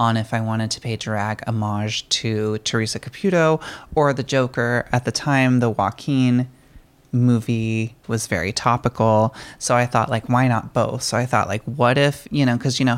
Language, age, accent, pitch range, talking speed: English, 20-39, American, 110-130 Hz, 190 wpm